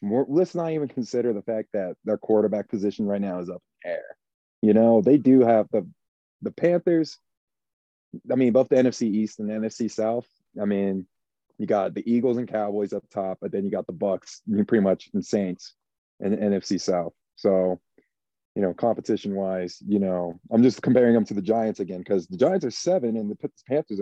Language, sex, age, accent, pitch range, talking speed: English, male, 30-49, American, 100-125 Hz, 205 wpm